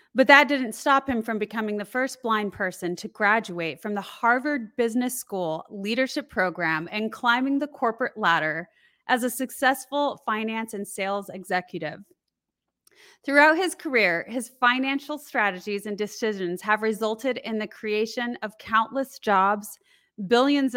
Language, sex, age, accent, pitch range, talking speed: English, female, 30-49, American, 200-255 Hz, 140 wpm